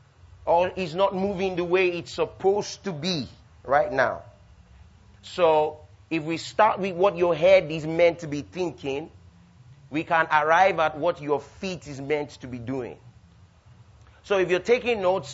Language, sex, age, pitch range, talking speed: English, male, 30-49, 120-185 Hz, 165 wpm